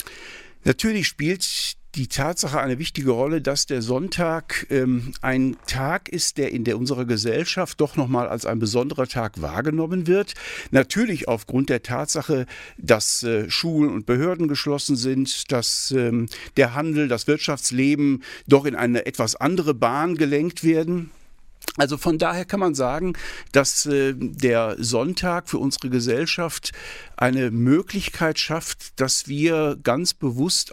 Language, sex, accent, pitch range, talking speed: German, male, German, 125-155 Hz, 145 wpm